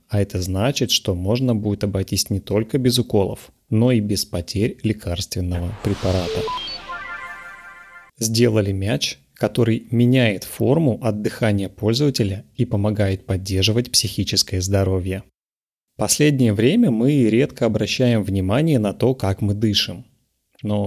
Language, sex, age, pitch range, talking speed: Russian, male, 30-49, 100-125 Hz, 125 wpm